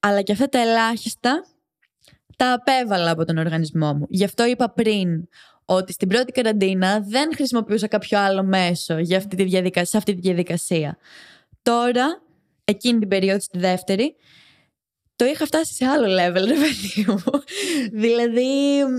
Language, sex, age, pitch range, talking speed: Greek, female, 20-39, 185-255 Hz, 150 wpm